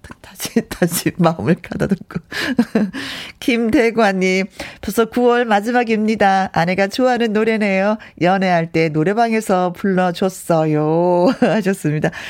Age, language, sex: 40-59, Korean, female